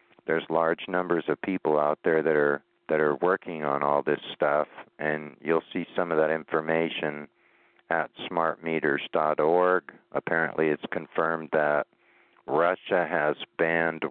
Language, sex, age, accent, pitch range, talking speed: English, male, 50-69, American, 80-90 Hz, 135 wpm